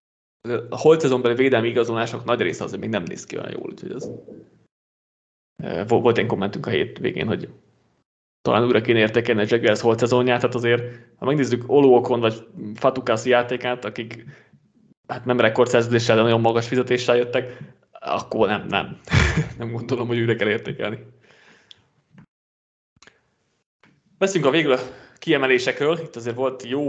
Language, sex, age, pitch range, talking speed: Hungarian, male, 20-39, 120-135 Hz, 140 wpm